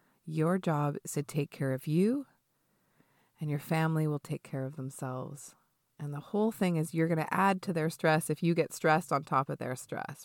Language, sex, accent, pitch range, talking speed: English, female, American, 145-180 Hz, 215 wpm